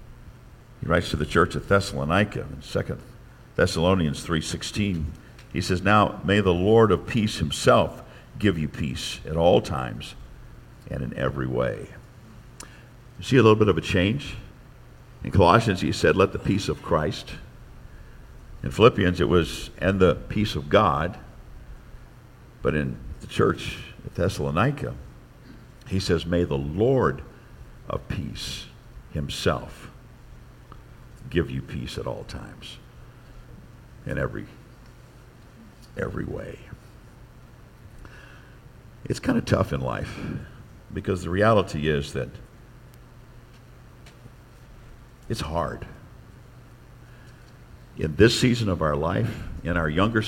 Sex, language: male, English